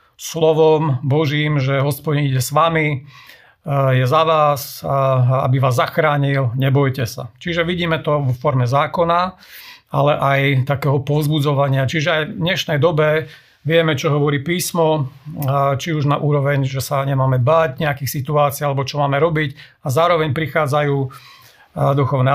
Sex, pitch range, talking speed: male, 135-155 Hz, 140 wpm